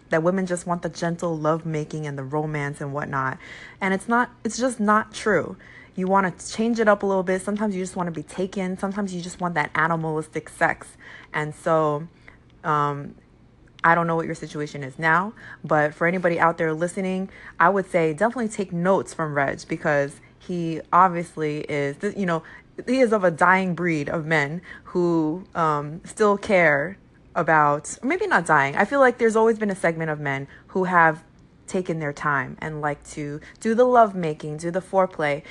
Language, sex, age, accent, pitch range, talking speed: English, female, 20-39, American, 150-185 Hz, 190 wpm